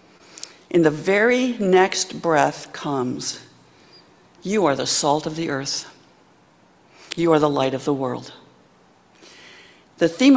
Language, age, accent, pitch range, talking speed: English, 60-79, American, 150-180 Hz, 125 wpm